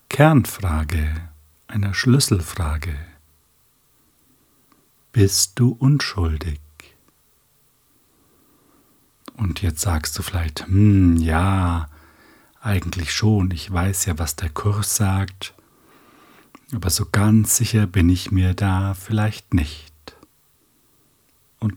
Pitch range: 85-115 Hz